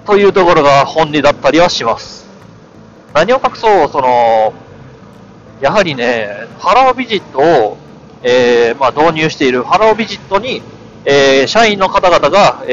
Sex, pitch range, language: male, 125-195 Hz, Japanese